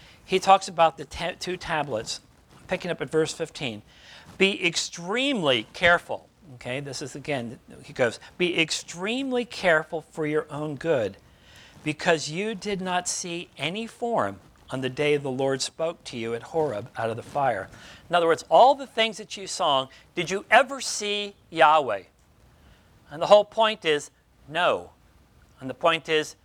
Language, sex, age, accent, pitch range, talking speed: English, male, 50-69, American, 145-195 Hz, 165 wpm